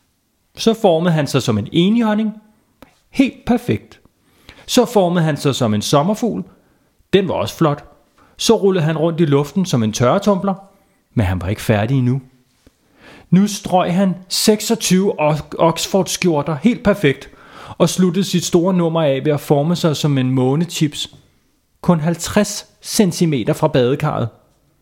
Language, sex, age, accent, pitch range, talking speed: Danish, male, 30-49, native, 135-205 Hz, 145 wpm